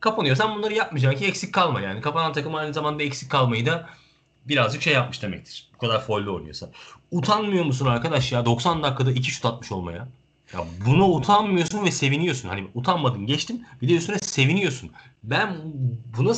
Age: 40-59